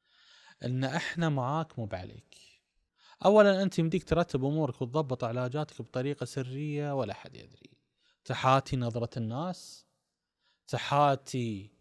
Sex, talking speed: male, 105 wpm